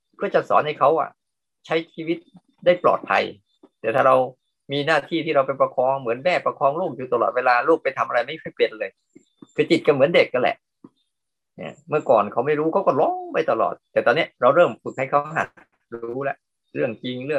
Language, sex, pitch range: Thai, male, 120-165 Hz